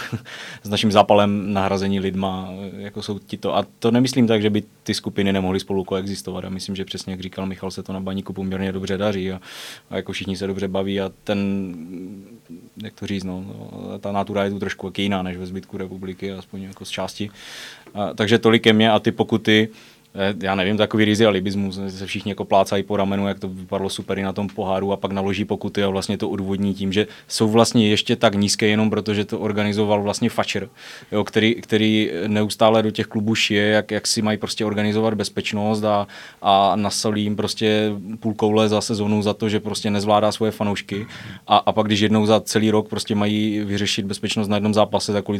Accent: native